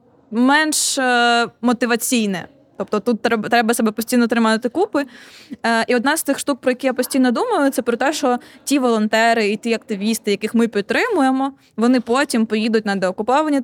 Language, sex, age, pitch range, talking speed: Ukrainian, female, 20-39, 205-255 Hz, 160 wpm